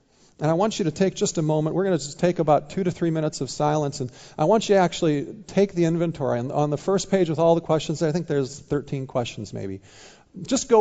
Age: 50-69